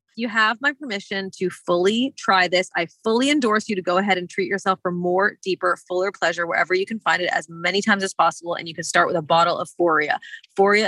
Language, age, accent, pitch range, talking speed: English, 30-49, American, 175-250 Hz, 235 wpm